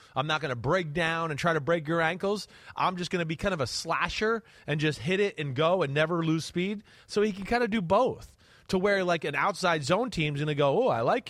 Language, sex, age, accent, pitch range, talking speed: English, male, 30-49, American, 145-190 Hz, 270 wpm